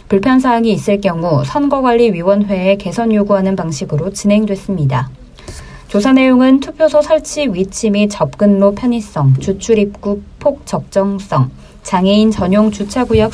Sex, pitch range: female, 185-240 Hz